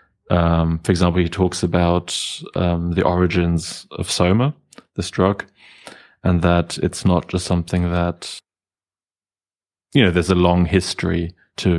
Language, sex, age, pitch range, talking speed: English, male, 20-39, 85-95 Hz, 130 wpm